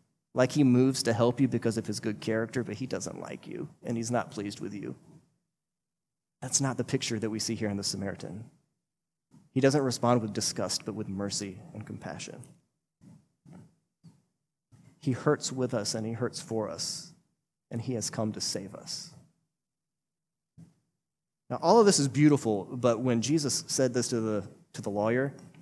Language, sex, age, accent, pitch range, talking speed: English, male, 30-49, American, 115-160 Hz, 175 wpm